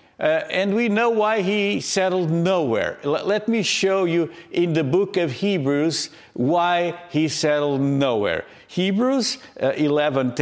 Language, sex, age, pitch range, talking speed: English, male, 50-69, 155-205 Hz, 130 wpm